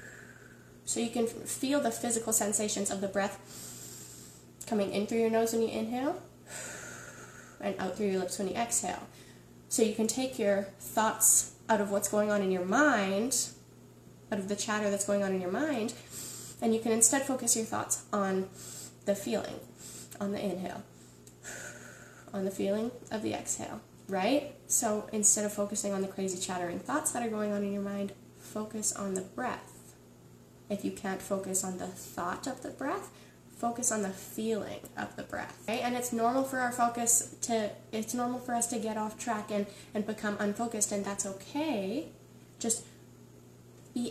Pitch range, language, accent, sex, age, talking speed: 190-225 Hz, English, American, female, 10-29, 180 wpm